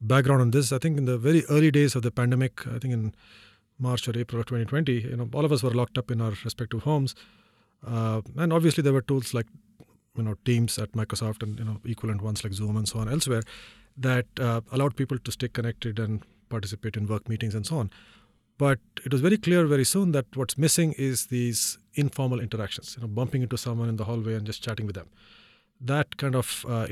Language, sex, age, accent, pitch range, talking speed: English, male, 40-59, Indian, 110-135 Hz, 225 wpm